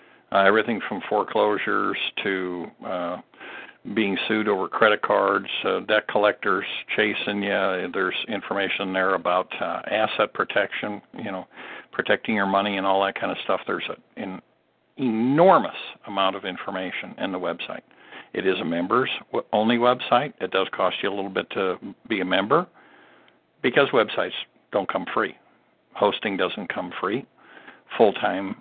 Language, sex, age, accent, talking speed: English, male, 60-79, American, 145 wpm